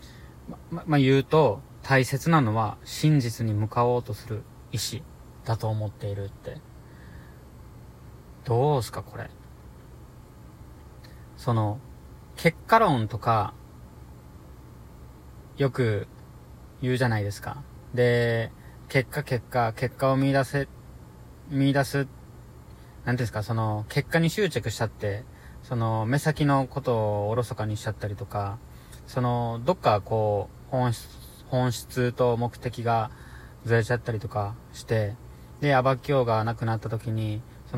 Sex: male